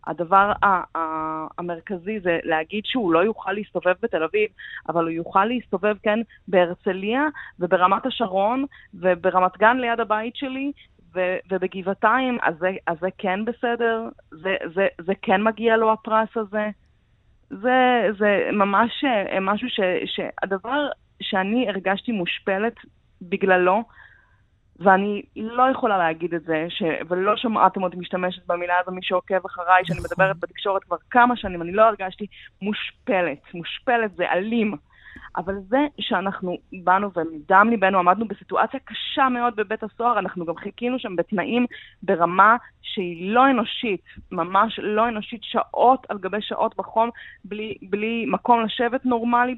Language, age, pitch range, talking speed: English, 20-39, 185-230 Hz, 135 wpm